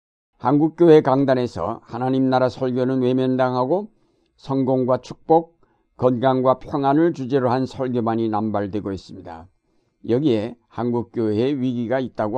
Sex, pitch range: male, 115-145 Hz